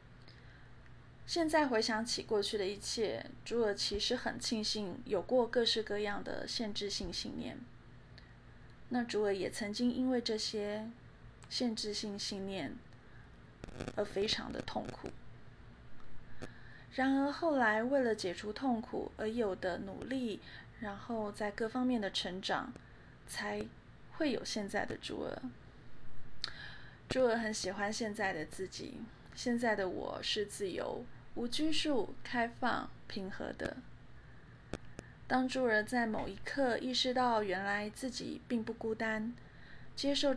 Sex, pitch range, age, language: female, 205-250 Hz, 20-39, Chinese